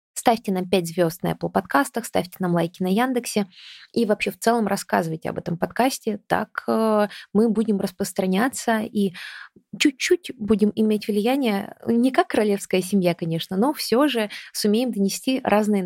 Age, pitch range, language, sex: 20-39, 185-230 Hz, Russian, female